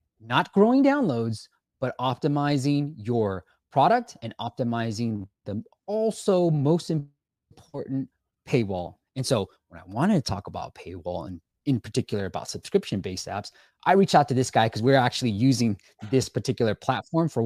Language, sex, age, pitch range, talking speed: English, male, 20-39, 115-175 Hz, 150 wpm